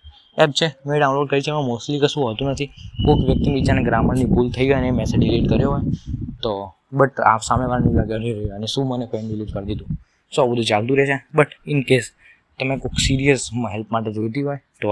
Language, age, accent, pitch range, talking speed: Gujarati, 20-39, native, 115-140 Hz, 175 wpm